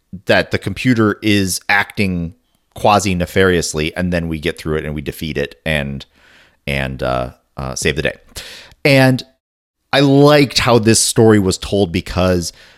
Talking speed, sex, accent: 155 wpm, male, American